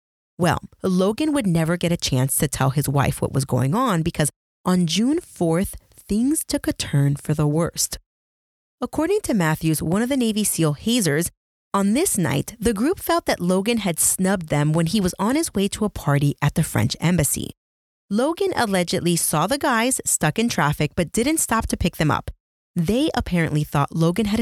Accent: American